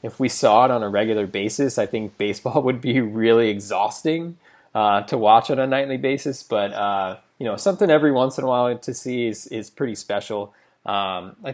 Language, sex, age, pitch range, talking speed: English, male, 20-39, 105-130 Hz, 210 wpm